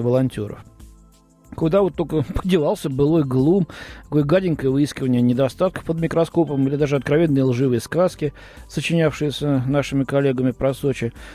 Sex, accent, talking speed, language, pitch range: male, native, 120 wpm, Russian, 125-170 Hz